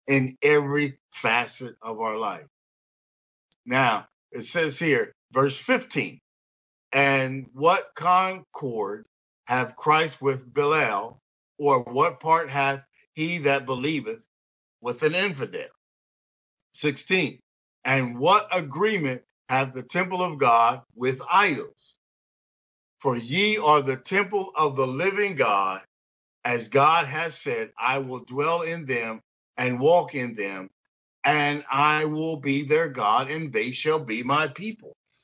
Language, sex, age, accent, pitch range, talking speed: English, male, 50-69, American, 130-180 Hz, 125 wpm